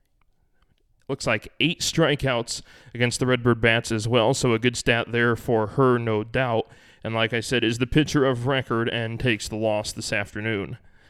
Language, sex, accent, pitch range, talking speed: English, male, American, 120-140 Hz, 185 wpm